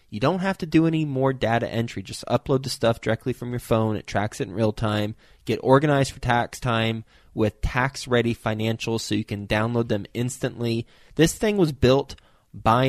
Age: 20-39